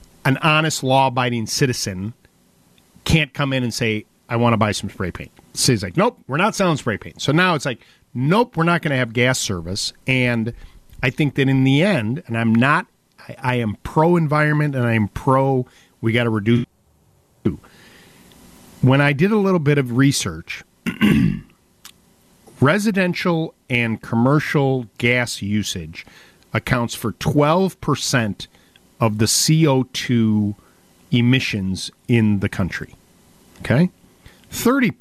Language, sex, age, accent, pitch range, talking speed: English, male, 50-69, American, 105-135 Hz, 140 wpm